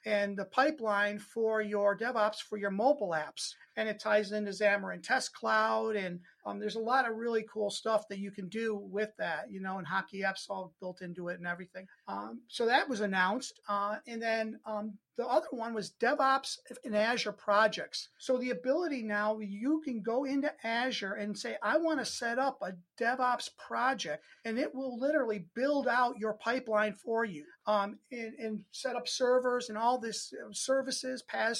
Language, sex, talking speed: English, male, 190 wpm